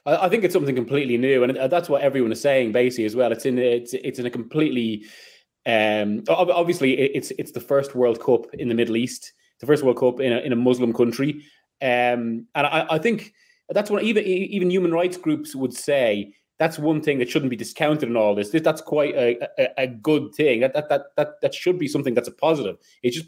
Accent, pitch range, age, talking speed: British, 125-160 Hz, 20-39, 225 wpm